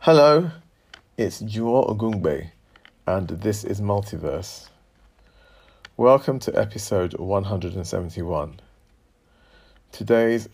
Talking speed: 75 wpm